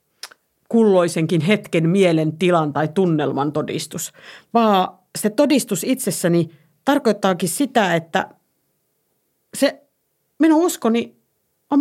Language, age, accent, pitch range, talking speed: Finnish, 50-69, native, 160-205 Hz, 85 wpm